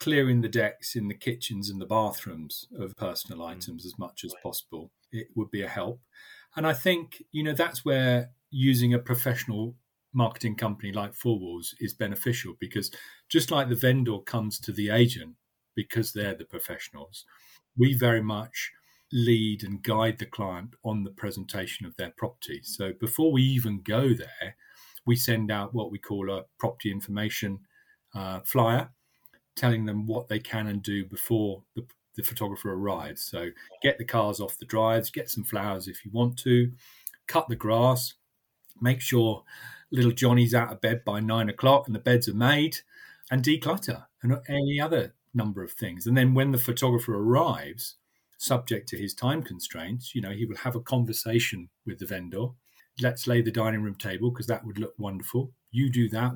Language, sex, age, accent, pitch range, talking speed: English, male, 40-59, British, 105-125 Hz, 180 wpm